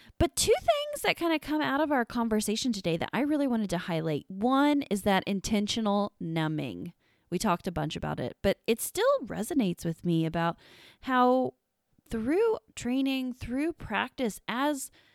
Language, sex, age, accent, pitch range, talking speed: English, female, 20-39, American, 185-265 Hz, 165 wpm